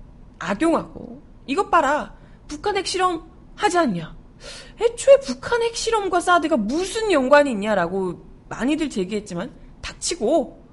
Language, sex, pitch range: Korean, female, 215-320 Hz